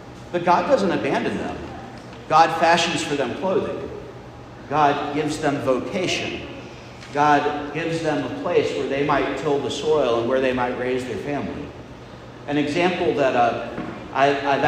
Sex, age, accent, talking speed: male, 50-69, American, 150 wpm